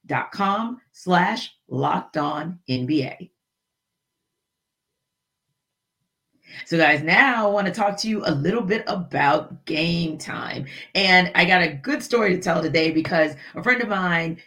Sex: female